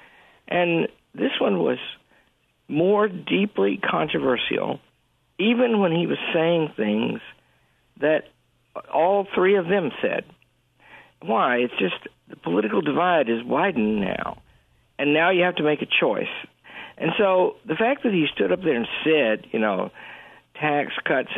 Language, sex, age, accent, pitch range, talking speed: English, male, 60-79, American, 150-220 Hz, 145 wpm